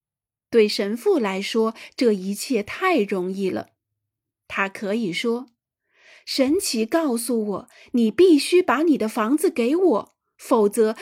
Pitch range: 210-295 Hz